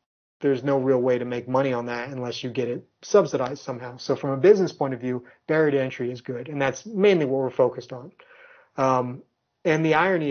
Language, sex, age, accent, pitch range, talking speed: English, male, 30-49, American, 130-155 Hz, 220 wpm